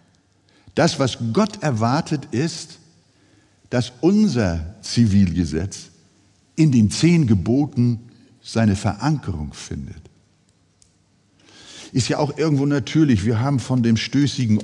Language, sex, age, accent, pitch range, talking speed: German, male, 60-79, German, 100-145 Hz, 105 wpm